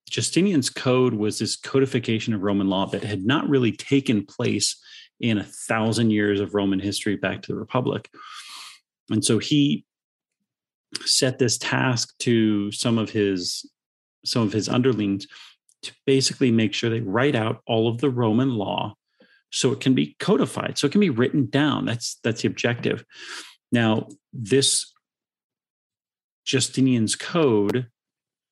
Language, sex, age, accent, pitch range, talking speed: English, male, 40-59, American, 105-130 Hz, 145 wpm